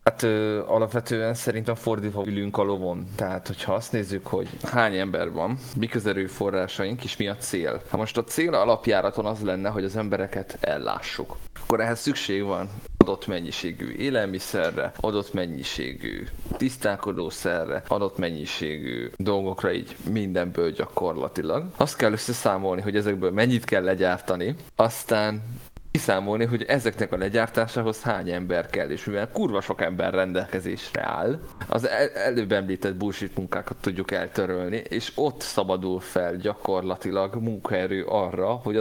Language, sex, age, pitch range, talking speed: Hungarian, male, 20-39, 95-115 Hz, 140 wpm